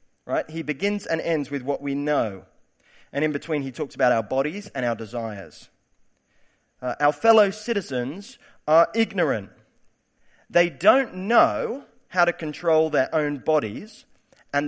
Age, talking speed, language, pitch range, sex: 40-59, 145 wpm, English, 115-175 Hz, male